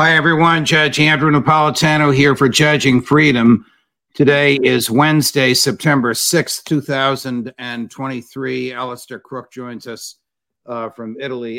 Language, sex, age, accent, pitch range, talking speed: English, male, 60-79, American, 115-140 Hz, 115 wpm